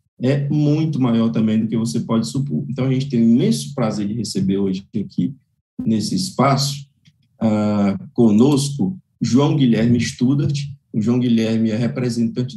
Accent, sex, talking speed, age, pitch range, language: Brazilian, male, 155 wpm, 50-69, 120-145 Hz, English